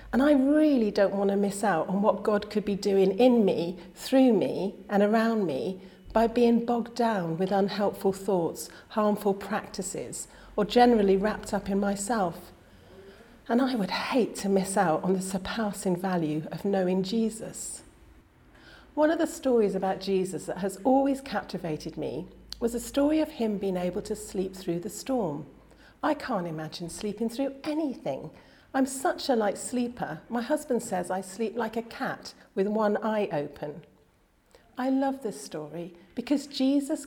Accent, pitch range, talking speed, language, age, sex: British, 190-255 Hz, 165 wpm, English, 40-59, female